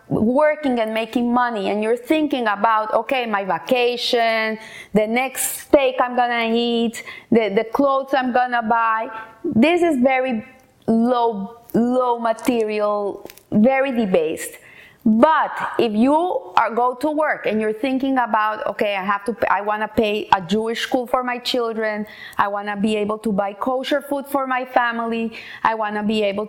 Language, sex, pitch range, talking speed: English, female, 225-275 Hz, 165 wpm